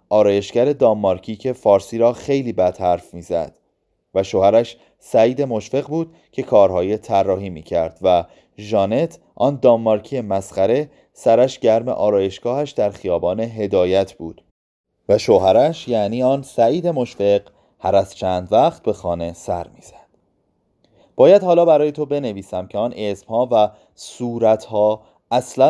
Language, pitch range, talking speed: Persian, 100-130 Hz, 130 wpm